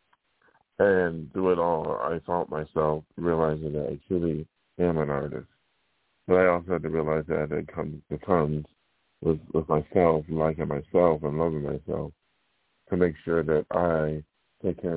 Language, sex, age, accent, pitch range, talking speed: English, male, 50-69, American, 75-85 Hz, 160 wpm